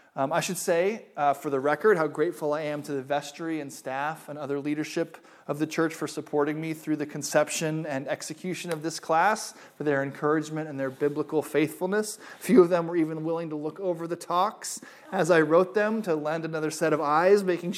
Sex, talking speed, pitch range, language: male, 215 wpm, 145-175 Hz, English